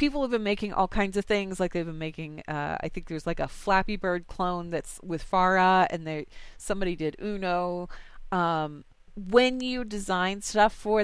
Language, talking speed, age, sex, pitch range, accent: English, 185 wpm, 30-49, female, 170-210 Hz, American